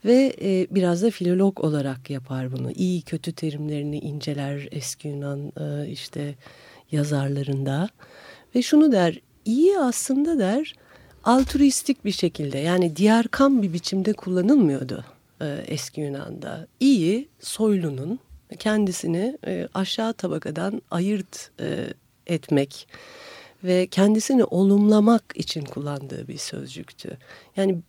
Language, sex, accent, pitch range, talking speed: Turkish, female, native, 150-215 Hz, 100 wpm